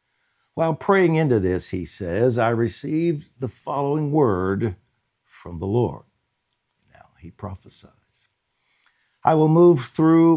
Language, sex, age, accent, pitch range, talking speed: English, male, 60-79, American, 110-145 Hz, 120 wpm